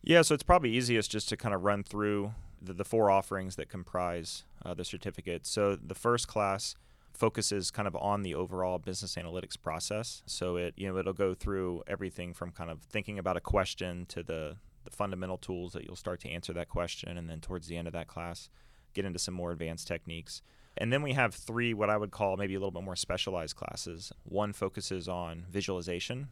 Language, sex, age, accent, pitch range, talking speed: English, male, 30-49, American, 90-100 Hz, 215 wpm